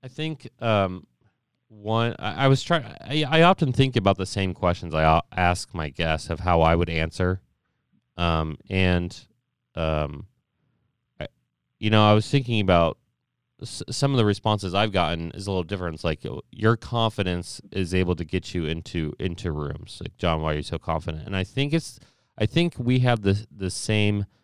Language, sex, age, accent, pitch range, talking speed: English, male, 30-49, American, 85-115 Hz, 180 wpm